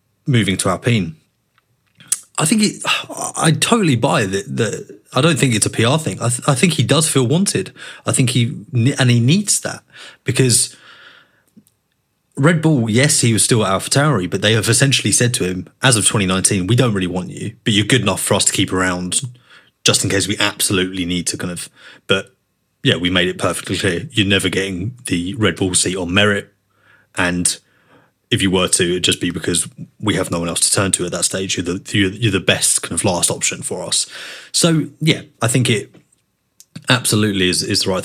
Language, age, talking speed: English, 30-49, 205 wpm